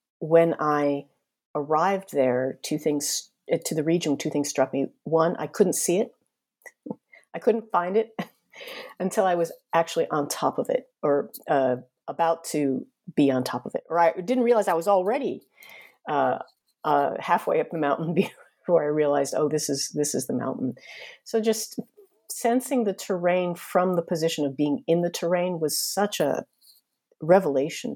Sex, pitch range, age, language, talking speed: female, 145-195 Hz, 50-69, English, 170 wpm